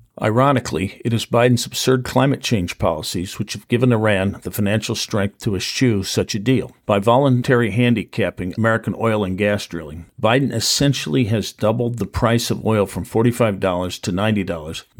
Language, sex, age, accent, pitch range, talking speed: English, male, 50-69, American, 95-115 Hz, 160 wpm